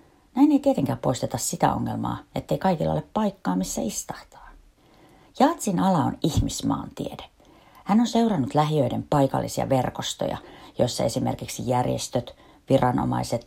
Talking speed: 115 wpm